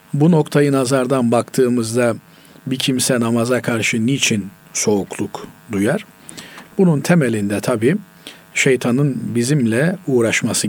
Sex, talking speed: male, 95 wpm